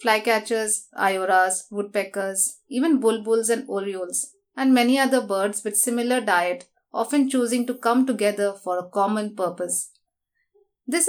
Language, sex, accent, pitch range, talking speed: English, female, Indian, 205-260 Hz, 130 wpm